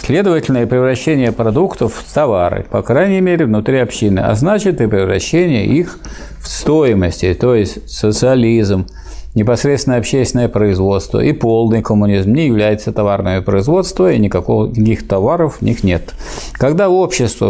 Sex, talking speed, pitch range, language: male, 135 wpm, 105-145 Hz, Russian